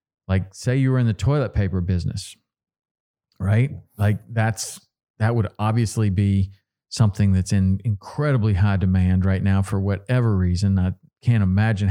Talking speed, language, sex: 150 wpm, English, male